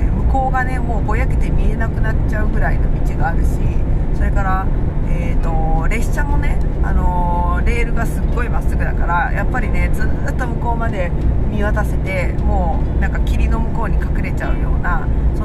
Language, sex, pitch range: Japanese, female, 65-75 Hz